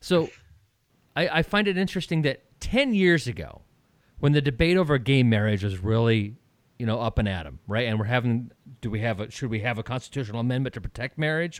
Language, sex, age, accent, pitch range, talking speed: English, male, 30-49, American, 120-170 Hz, 200 wpm